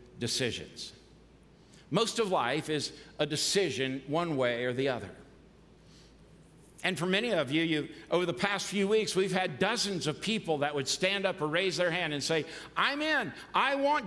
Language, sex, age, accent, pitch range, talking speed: English, male, 60-79, American, 165-235 Hz, 180 wpm